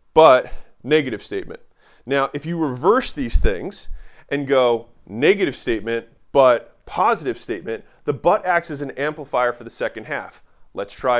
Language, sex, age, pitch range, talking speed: English, male, 30-49, 100-145 Hz, 150 wpm